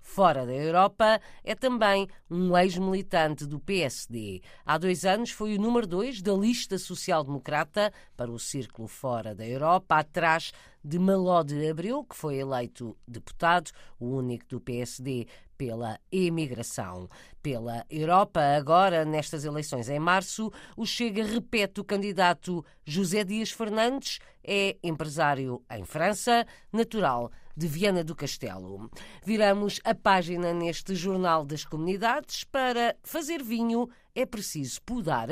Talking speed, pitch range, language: 130 wpm, 150-220 Hz, Portuguese